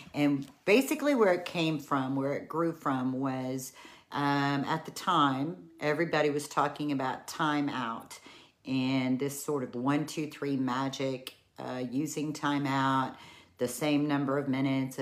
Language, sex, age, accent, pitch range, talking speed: English, female, 40-59, American, 135-165 Hz, 150 wpm